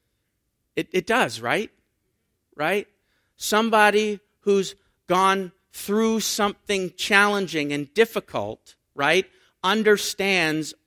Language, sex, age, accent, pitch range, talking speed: English, male, 50-69, American, 145-210 Hz, 85 wpm